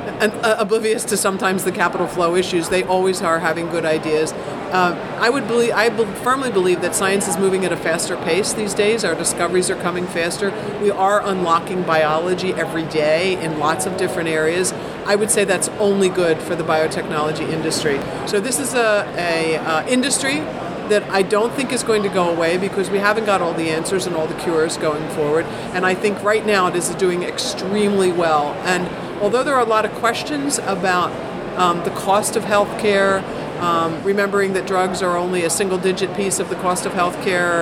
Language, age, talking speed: English, 50-69, 200 wpm